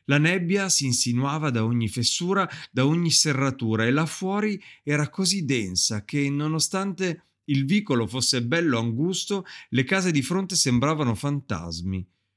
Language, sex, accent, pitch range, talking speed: Italian, male, native, 115-155 Hz, 140 wpm